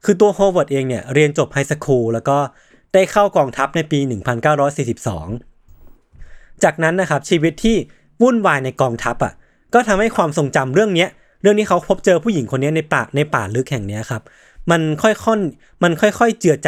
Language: Thai